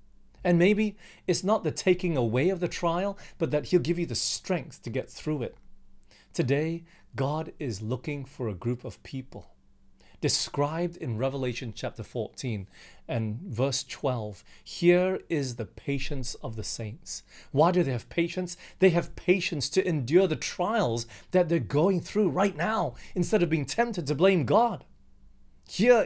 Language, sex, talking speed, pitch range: English, male, 165 wpm, 120-175 Hz